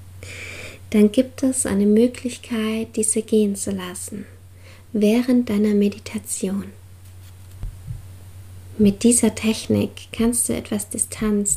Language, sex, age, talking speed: German, female, 20-39, 100 wpm